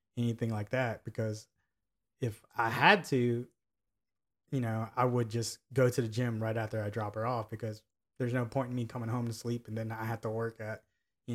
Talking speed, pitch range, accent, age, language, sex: 215 wpm, 110-120 Hz, American, 20-39, English, male